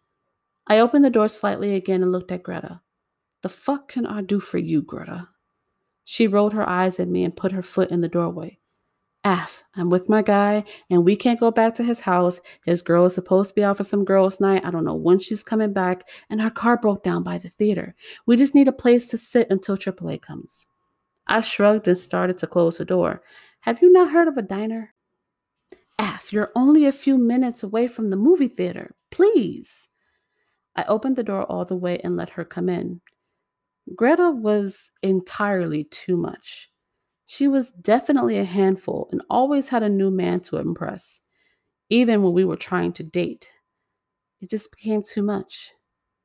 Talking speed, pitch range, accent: 195 wpm, 185-240 Hz, American